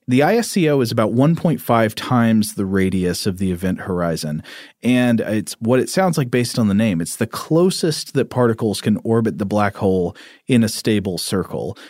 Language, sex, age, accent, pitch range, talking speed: English, male, 30-49, American, 100-125 Hz, 180 wpm